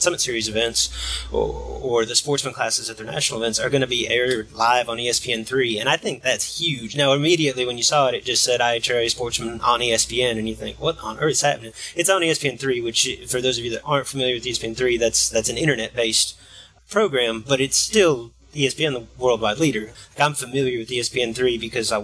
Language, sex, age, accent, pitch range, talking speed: English, male, 30-49, American, 110-135 Hz, 210 wpm